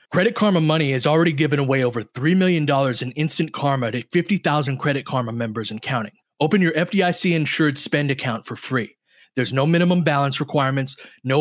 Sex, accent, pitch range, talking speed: male, American, 130-165 Hz, 175 wpm